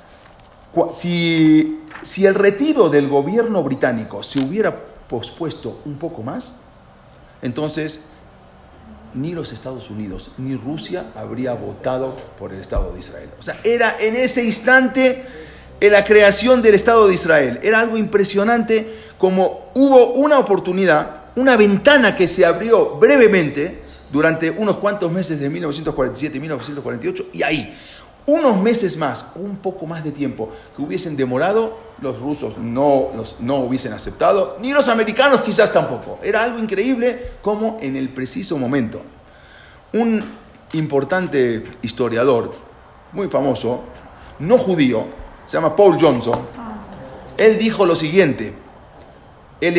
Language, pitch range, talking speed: English, 130-220 Hz, 130 wpm